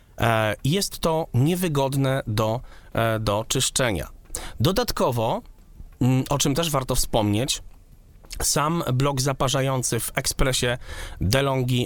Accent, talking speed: native, 90 wpm